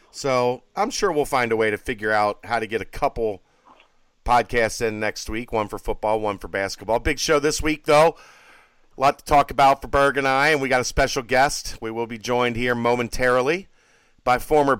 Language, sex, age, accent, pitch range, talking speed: English, male, 40-59, American, 120-145 Hz, 215 wpm